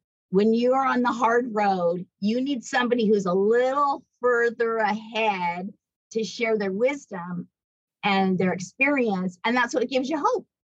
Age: 30-49